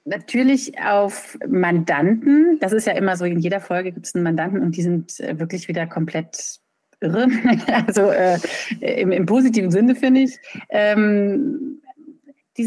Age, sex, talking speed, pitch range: 30-49, female, 150 wpm, 180-255 Hz